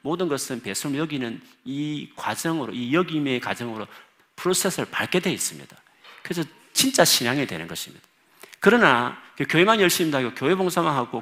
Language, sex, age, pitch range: Korean, male, 40-59, 120-190 Hz